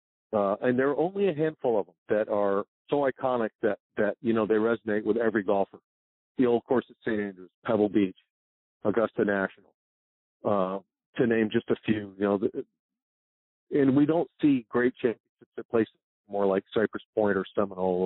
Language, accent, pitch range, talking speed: English, American, 100-125 Hz, 185 wpm